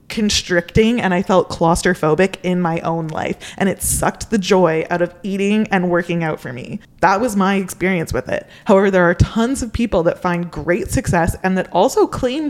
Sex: female